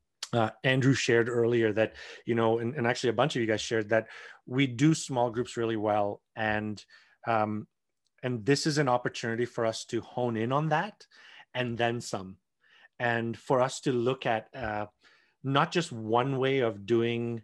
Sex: male